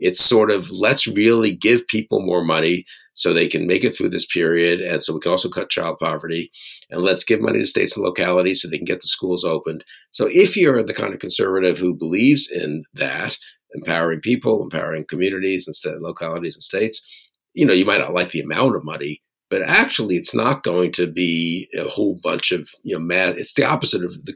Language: English